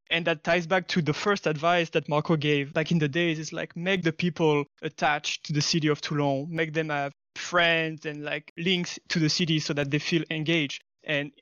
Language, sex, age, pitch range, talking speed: English, male, 20-39, 150-175 Hz, 220 wpm